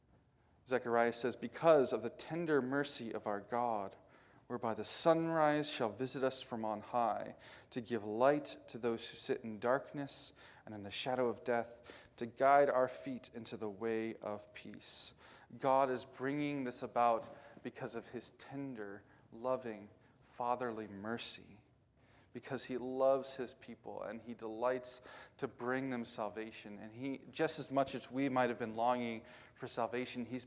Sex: male